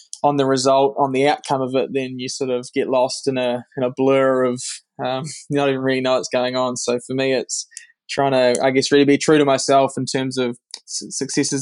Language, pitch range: English, 125-135 Hz